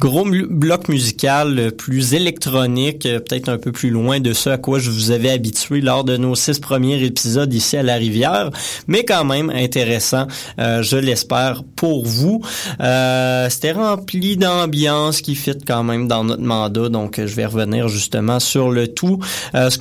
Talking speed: 190 wpm